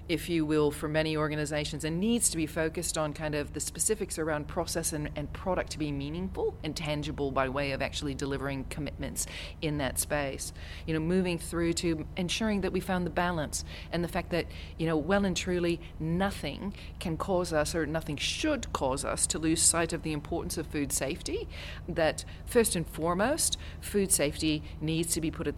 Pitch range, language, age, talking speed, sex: 145-180 Hz, English, 40-59, 195 wpm, female